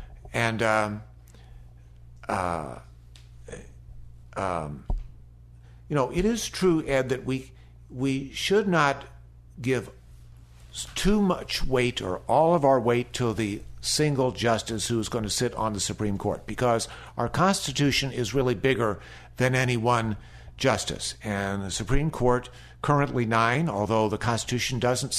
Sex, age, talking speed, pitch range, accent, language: male, 50-69, 135 wpm, 105-140 Hz, American, English